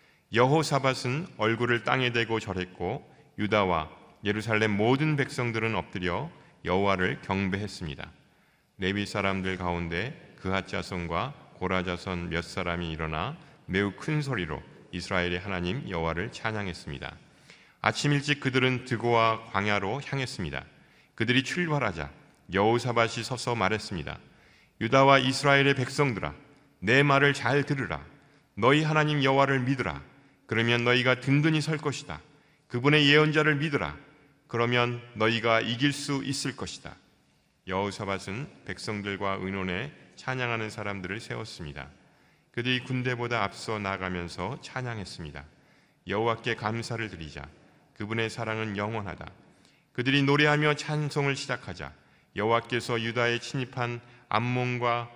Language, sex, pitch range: Korean, male, 95-135 Hz